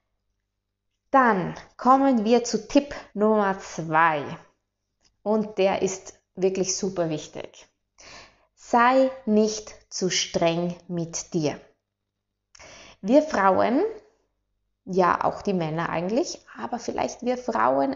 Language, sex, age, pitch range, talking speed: German, female, 20-39, 185-230 Hz, 100 wpm